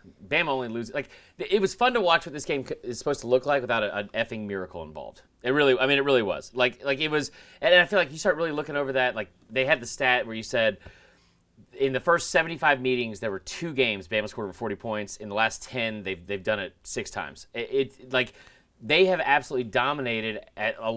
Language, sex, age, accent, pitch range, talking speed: English, male, 30-49, American, 110-150 Hz, 240 wpm